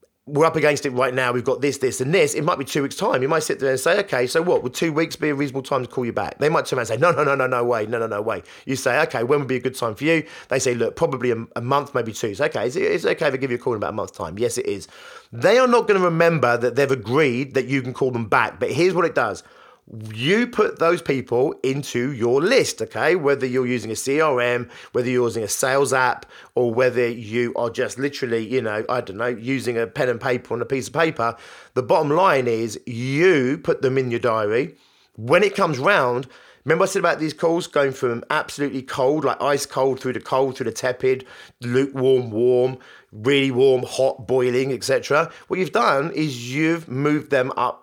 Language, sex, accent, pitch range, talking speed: English, male, British, 125-160 Hz, 255 wpm